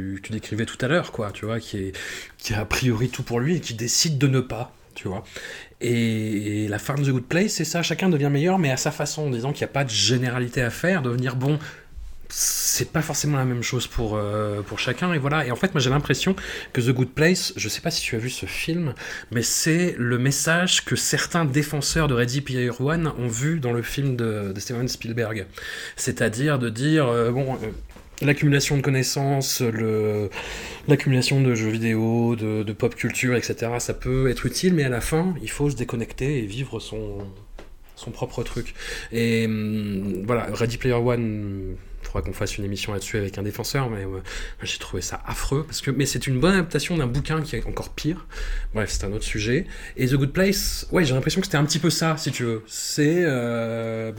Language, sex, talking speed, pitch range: French, male, 220 wpm, 110-145 Hz